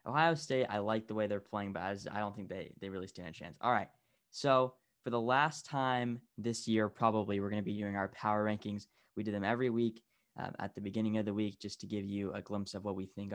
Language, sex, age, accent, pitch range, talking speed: English, male, 10-29, American, 100-115 Hz, 260 wpm